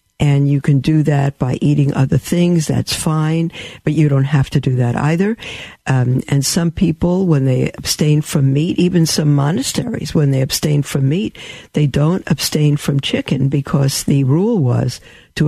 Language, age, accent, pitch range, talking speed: English, 60-79, American, 135-160 Hz, 180 wpm